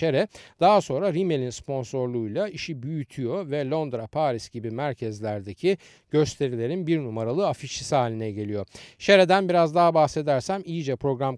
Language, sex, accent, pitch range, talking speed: Turkish, male, native, 125-190 Hz, 120 wpm